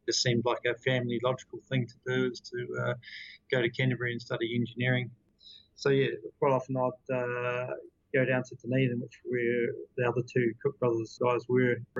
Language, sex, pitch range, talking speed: English, male, 120-135 Hz, 185 wpm